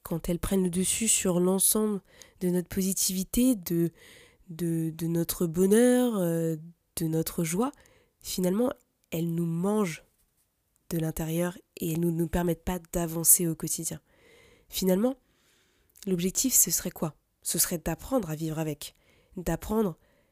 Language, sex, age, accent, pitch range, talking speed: French, female, 20-39, French, 170-205 Hz, 130 wpm